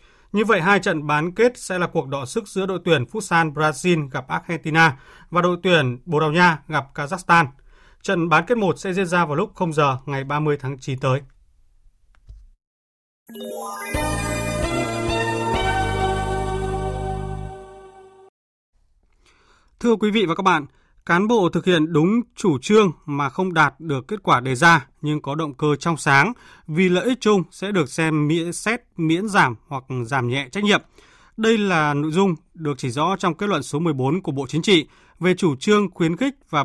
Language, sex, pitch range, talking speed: Vietnamese, male, 140-185 Hz, 175 wpm